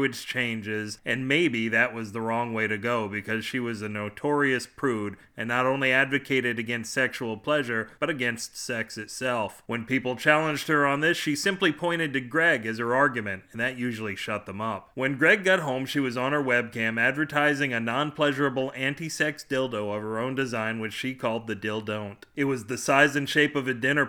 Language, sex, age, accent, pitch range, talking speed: English, male, 30-49, American, 115-145 Hz, 195 wpm